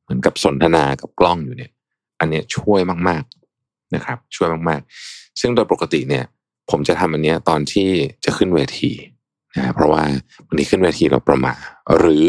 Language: Thai